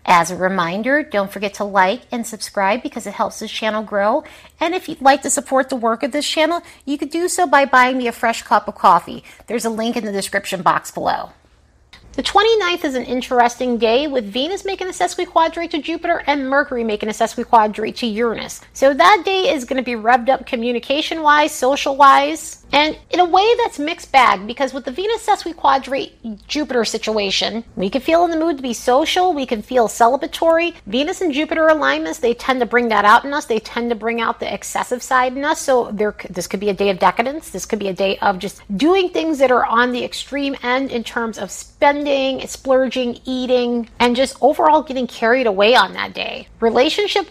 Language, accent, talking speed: English, American, 215 wpm